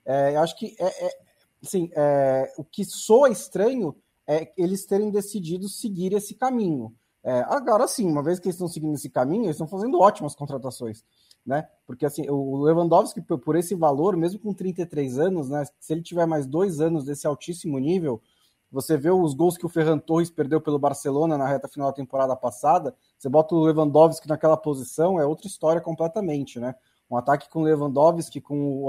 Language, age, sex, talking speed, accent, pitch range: Portuguese, 20-39, male, 190 wpm, Brazilian, 140-180 Hz